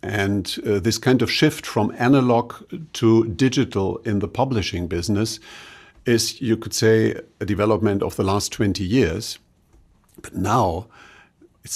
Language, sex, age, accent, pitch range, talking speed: English, male, 50-69, German, 105-120 Hz, 145 wpm